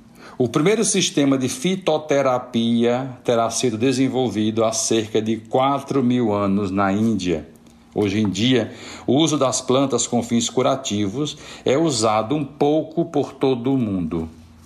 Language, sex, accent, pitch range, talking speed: Portuguese, male, Brazilian, 100-125 Hz, 140 wpm